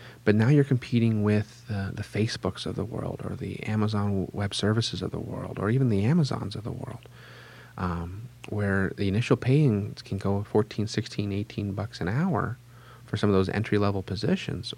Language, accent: English, American